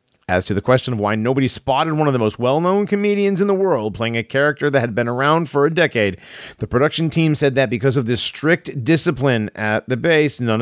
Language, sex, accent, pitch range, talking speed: English, male, American, 105-150 Hz, 230 wpm